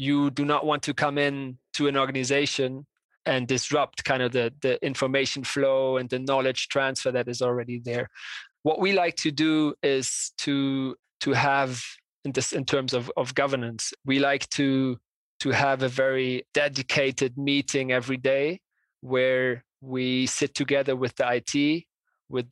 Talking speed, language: 165 wpm, English